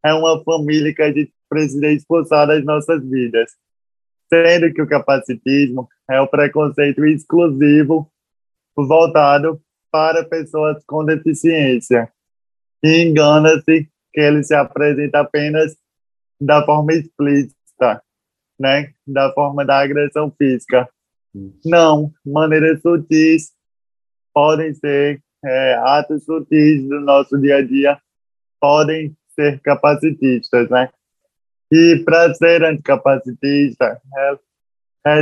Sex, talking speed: male, 105 wpm